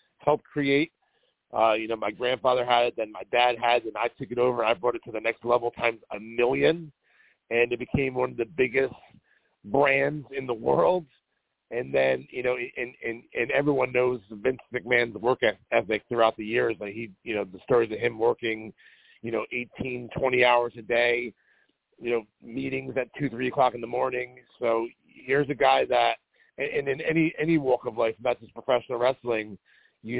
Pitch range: 115-130 Hz